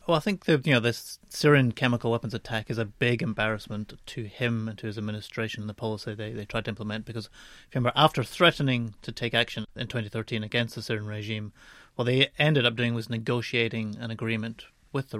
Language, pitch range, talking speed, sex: English, 115-125 Hz, 220 wpm, male